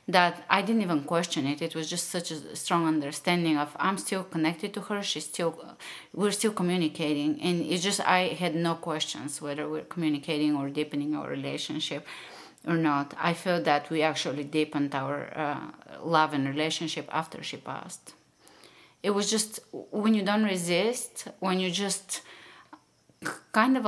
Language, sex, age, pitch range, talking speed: English, female, 30-49, 150-180 Hz, 165 wpm